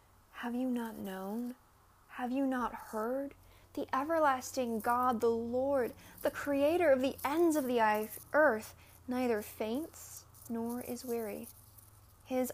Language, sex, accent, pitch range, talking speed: English, female, American, 205-250 Hz, 130 wpm